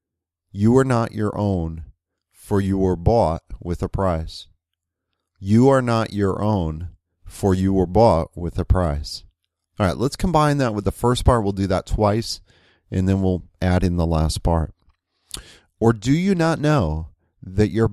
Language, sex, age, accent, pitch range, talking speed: English, male, 40-59, American, 85-115 Hz, 175 wpm